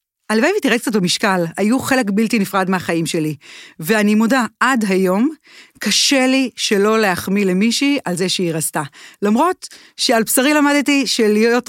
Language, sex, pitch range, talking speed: Hebrew, female, 185-245 Hz, 145 wpm